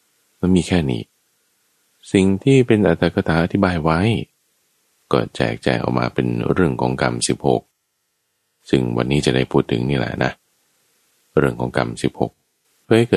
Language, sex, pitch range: Thai, male, 65-80 Hz